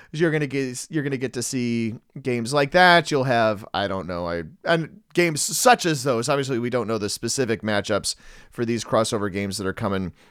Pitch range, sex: 110-175 Hz, male